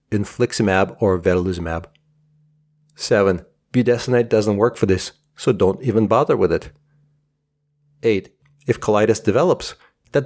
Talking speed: 115 wpm